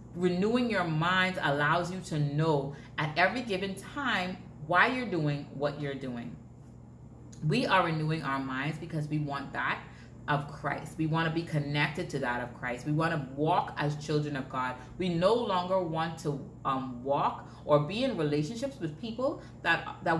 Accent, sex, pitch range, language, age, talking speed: American, female, 135-175 Hz, English, 30-49, 180 wpm